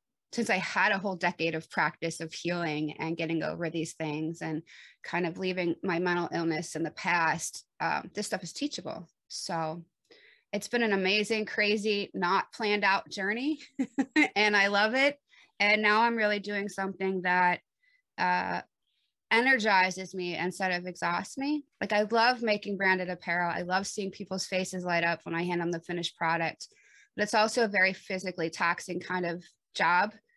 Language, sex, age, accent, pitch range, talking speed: English, female, 20-39, American, 180-225 Hz, 175 wpm